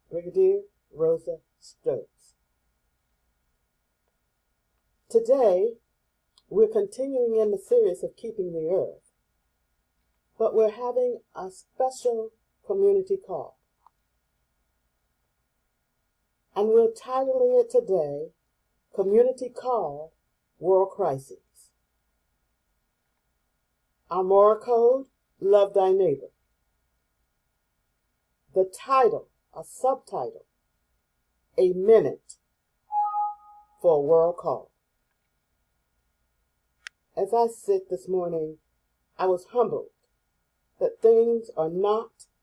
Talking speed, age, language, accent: 80 wpm, 50-69, English, American